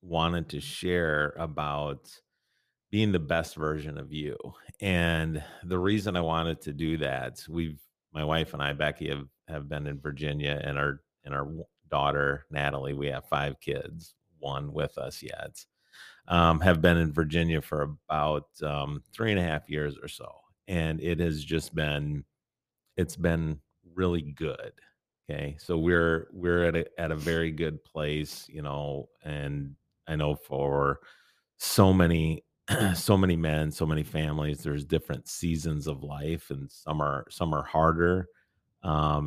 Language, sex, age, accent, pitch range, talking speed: English, male, 30-49, American, 75-85 Hz, 160 wpm